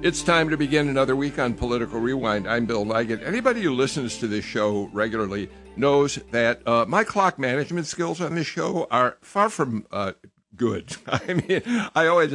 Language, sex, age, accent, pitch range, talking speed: English, male, 60-79, American, 105-135 Hz, 185 wpm